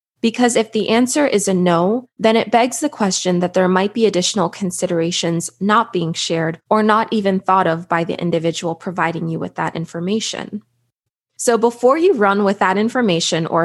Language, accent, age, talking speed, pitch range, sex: English, American, 20-39, 185 wpm, 175-220 Hz, female